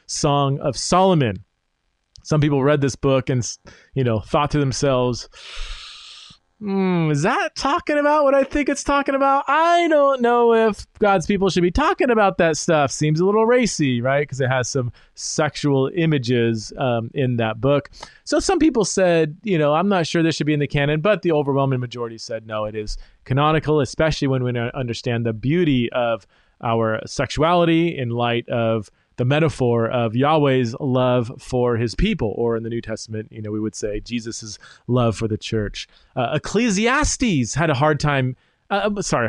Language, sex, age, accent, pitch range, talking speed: English, male, 20-39, American, 125-190 Hz, 180 wpm